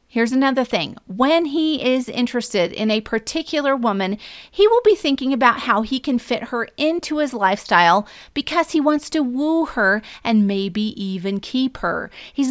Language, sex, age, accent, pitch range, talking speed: English, female, 40-59, American, 205-270 Hz, 175 wpm